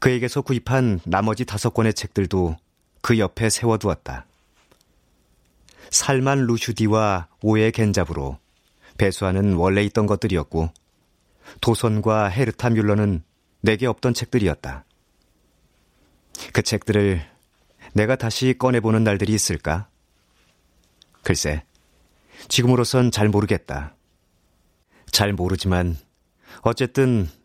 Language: Korean